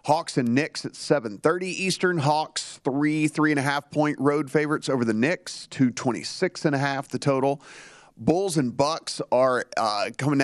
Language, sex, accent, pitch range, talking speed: English, male, American, 125-150 Hz, 170 wpm